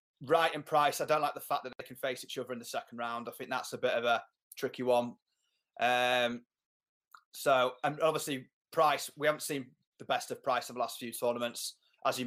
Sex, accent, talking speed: male, British, 225 wpm